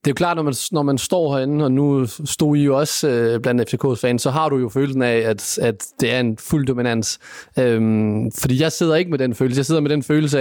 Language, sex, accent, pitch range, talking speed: Danish, male, native, 125-155 Hz, 265 wpm